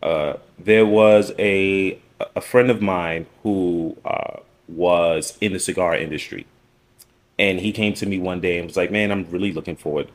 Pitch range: 95-115 Hz